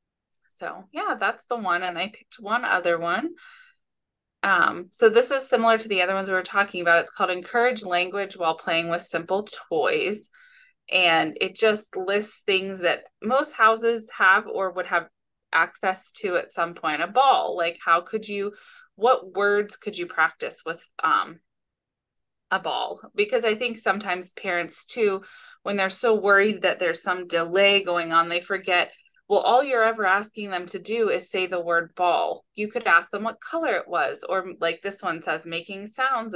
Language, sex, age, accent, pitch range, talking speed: English, female, 20-39, American, 180-250 Hz, 185 wpm